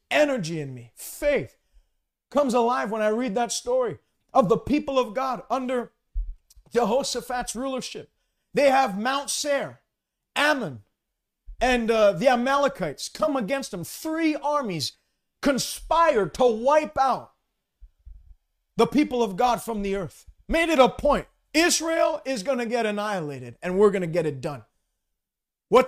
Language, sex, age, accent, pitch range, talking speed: English, male, 40-59, American, 215-300 Hz, 145 wpm